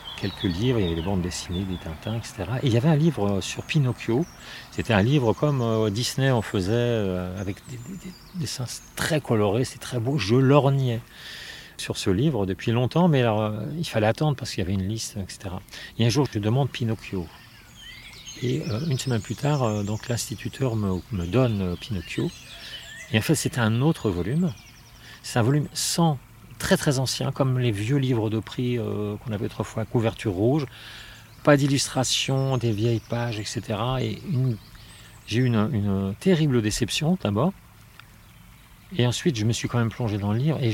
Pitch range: 105-130 Hz